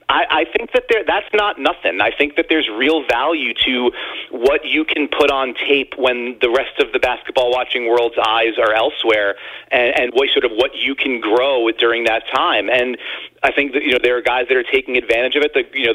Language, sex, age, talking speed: English, male, 40-59, 235 wpm